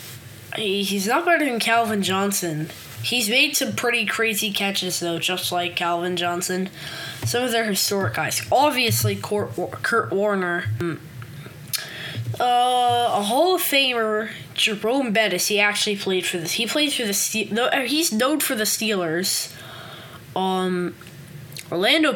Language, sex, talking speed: English, female, 135 wpm